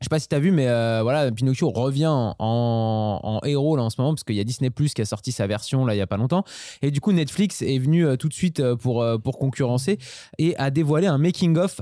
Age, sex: 20-39, male